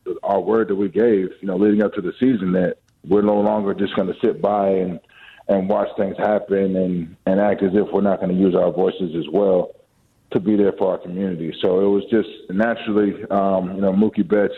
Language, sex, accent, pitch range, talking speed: English, male, American, 95-105 Hz, 230 wpm